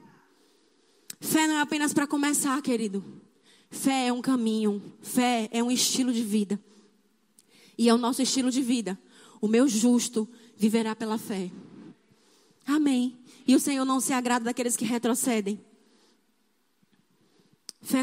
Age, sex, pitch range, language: 20-39, female, 225-265 Hz, Portuguese